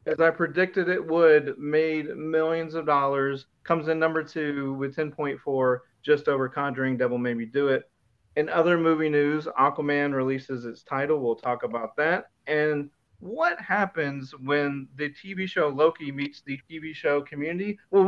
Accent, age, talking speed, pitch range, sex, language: American, 30-49, 165 wpm, 130-160 Hz, male, English